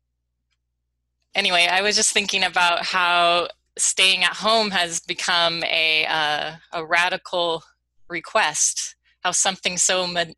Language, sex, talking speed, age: English, female, 120 wpm, 20-39